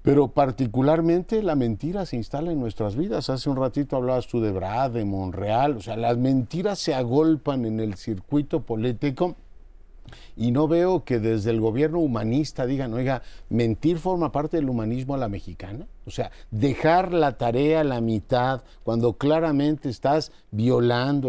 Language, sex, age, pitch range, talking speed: Spanish, male, 50-69, 115-155 Hz, 165 wpm